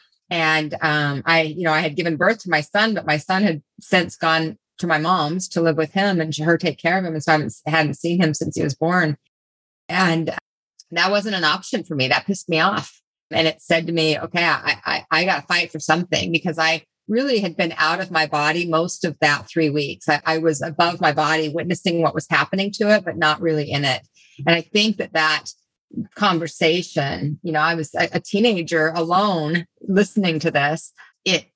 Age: 30-49